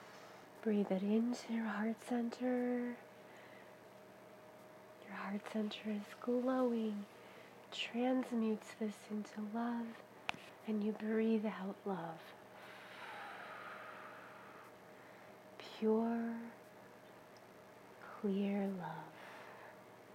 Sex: female